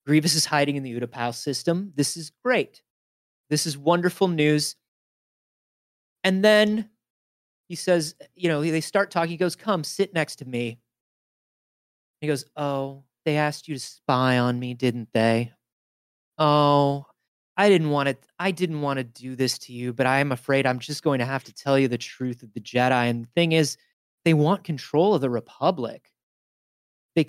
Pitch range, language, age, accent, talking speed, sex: 130-185 Hz, English, 20-39, American, 180 wpm, male